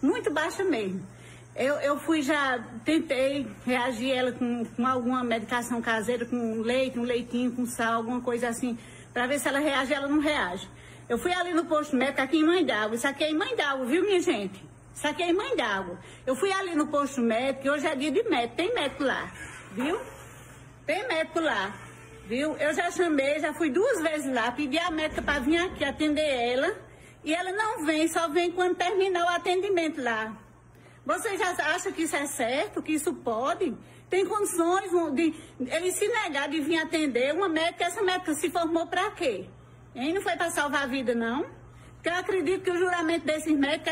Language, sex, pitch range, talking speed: Portuguese, female, 265-355 Hz, 200 wpm